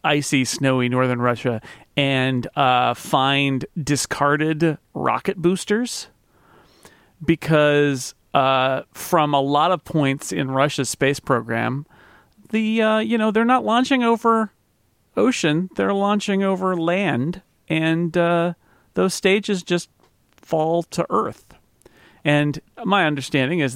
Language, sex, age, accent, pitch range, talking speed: English, male, 40-59, American, 125-165 Hz, 115 wpm